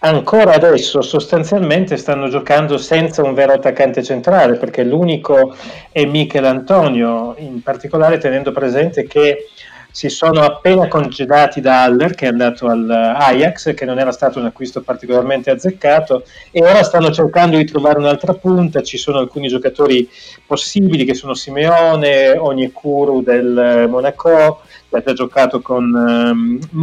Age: 30-49